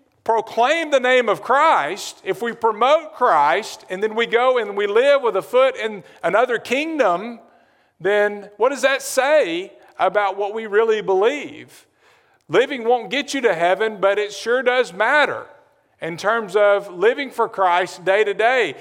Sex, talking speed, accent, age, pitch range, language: male, 165 wpm, American, 50-69, 200-250 Hz, English